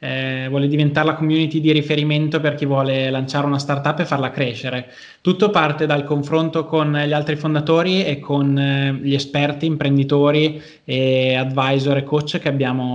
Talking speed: 165 wpm